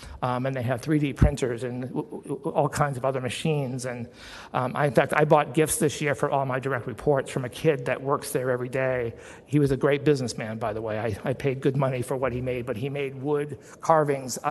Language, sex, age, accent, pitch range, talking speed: English, male, 50-69, American, 125-145 Hz, 230 wpm